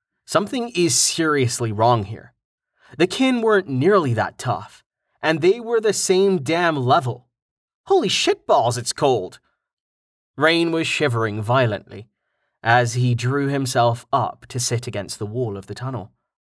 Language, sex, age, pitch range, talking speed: English, male, 30-49, 110-145 Hz, 145 wpm